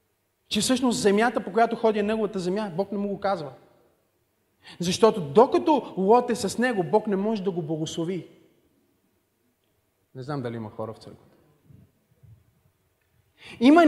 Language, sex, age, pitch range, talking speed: Bulgarian, male, 30-49, 150-230 Hz, 145 wpm